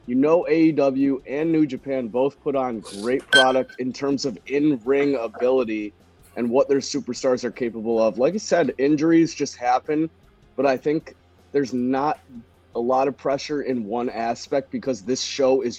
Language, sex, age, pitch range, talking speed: English, male, 30-49, 115-145 Hz, 175 wpm